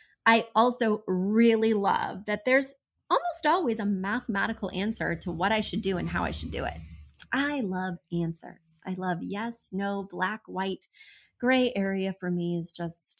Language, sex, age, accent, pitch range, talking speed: English, female, 30-49, American, 185-245 Hz, 170 wpm